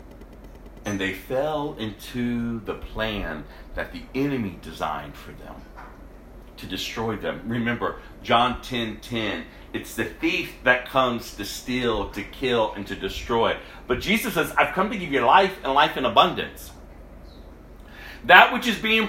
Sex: male